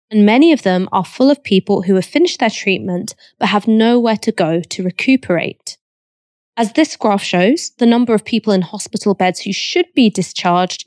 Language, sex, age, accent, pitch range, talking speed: English, female, 20-39, British, 185-265 Hz, 195 wpm